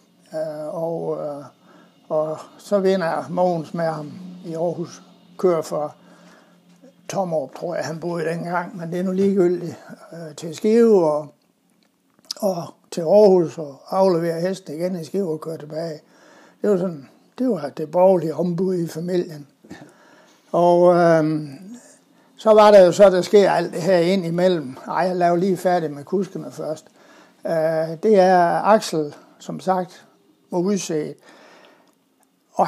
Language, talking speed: Danish, 145 wpm